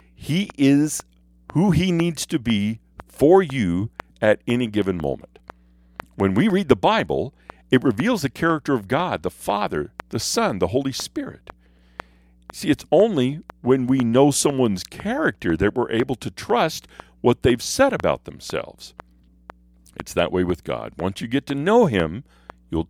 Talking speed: 160 wpm